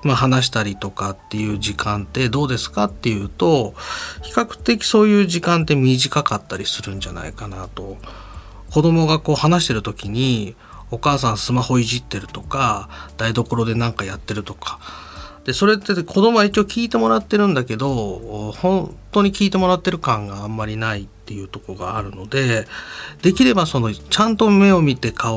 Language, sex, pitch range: Japanese, male, 105-170 Hz